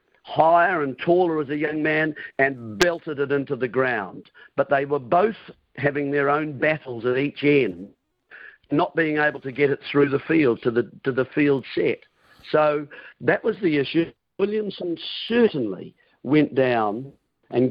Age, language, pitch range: 50-69, English, 130-160 Hz